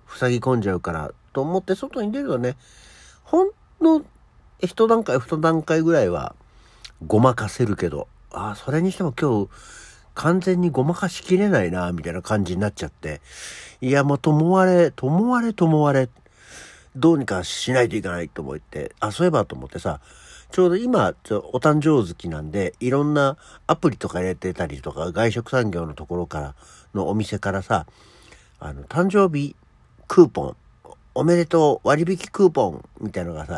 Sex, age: male, 50-69